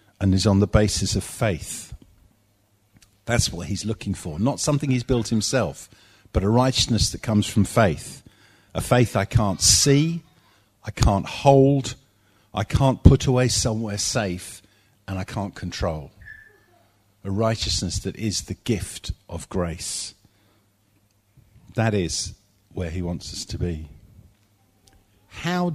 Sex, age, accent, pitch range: male, 50-69, British, 100-125 Hz